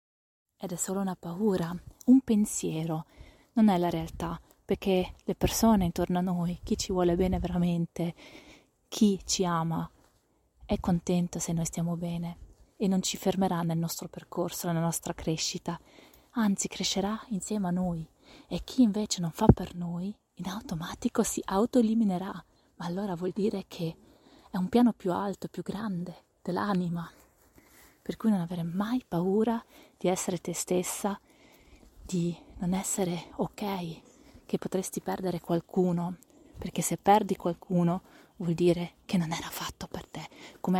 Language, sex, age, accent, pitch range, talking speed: Italian, female, 20-39, native, 175-200 Hz, 150 wpm